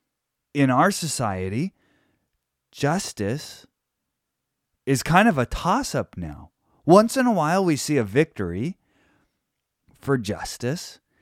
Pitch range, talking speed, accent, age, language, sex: 100-145 Hz, 105 wpm, American, 30-49, English, male